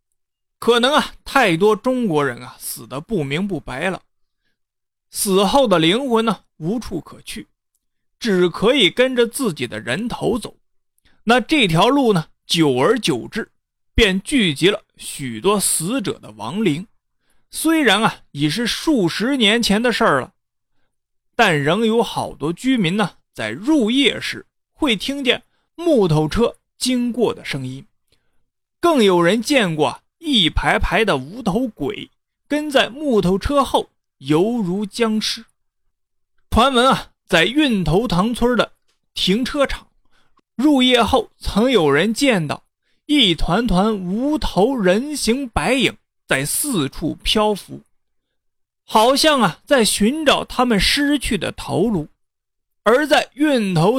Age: 30-49